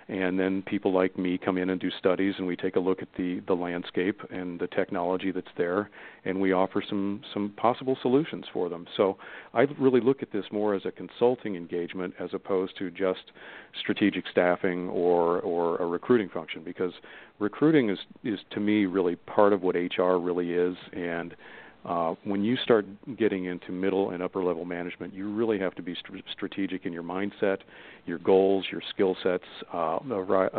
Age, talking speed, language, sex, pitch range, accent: 40-59, 185 wpm, English, male, 90-105 Hz, American